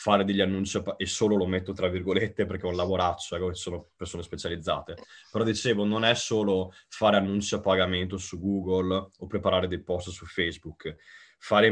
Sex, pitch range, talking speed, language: male, 95-105 Hz, 175 wpm, Italian